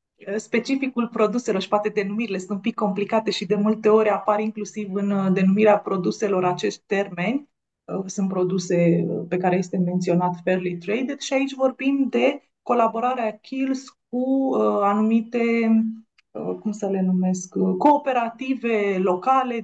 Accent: native